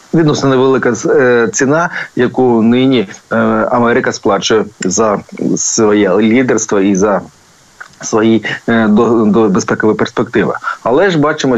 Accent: native